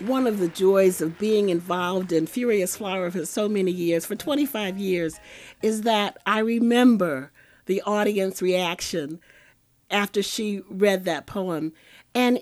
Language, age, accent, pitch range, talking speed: English, 50-69, American, 165-215 Hz, 145 wpm